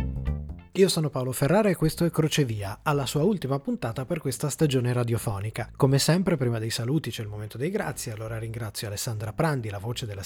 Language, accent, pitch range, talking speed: Italian, native, 105-140 Hz, 195 wpm